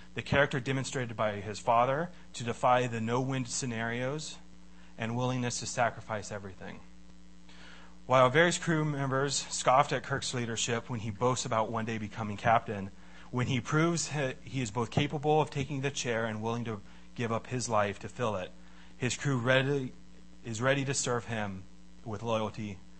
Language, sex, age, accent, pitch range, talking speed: English, male, 30-49, American, 100-135 Hz, 165 wpm